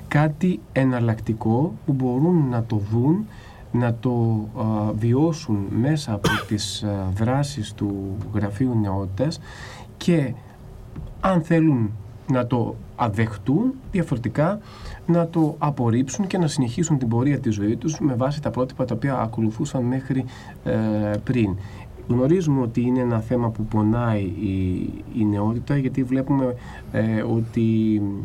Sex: male